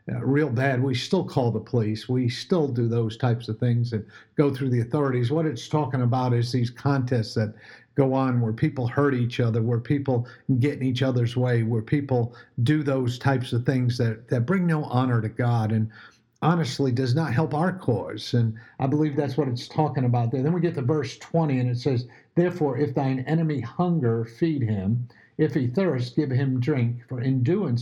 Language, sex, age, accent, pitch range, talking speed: English, male, 50-69, American, 120-150 Hz, 205 wpm